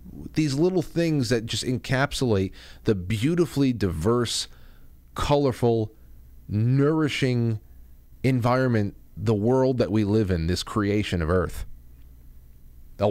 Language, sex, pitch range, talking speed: English, male, 90-120 Hz, 105 wpm